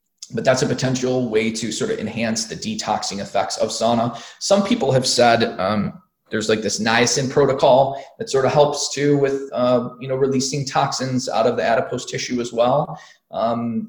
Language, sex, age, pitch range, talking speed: English, male, 20-39, 115-165 Hz, 185 wpm